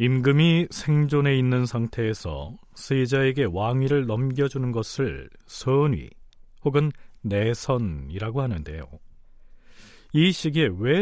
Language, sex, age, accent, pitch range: Korean, male, 40-59, native, 100-145 Hz